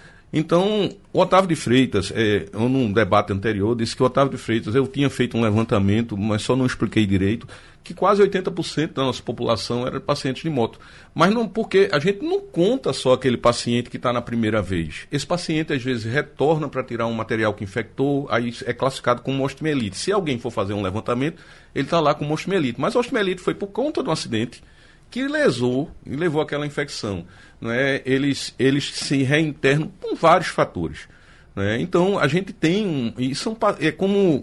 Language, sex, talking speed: Portuguese, male, 190 wpm